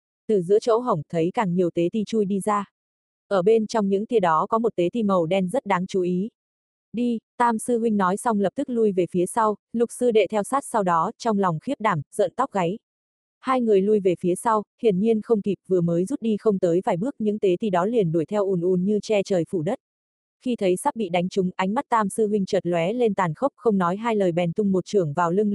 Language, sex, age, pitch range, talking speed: Vietnamese, female, 20-39, 185-225 Hz, 265 wpm